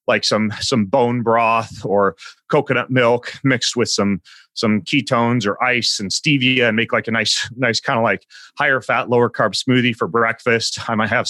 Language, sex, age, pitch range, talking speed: English, male, 30-49, 110-130 Hz, 190 wpm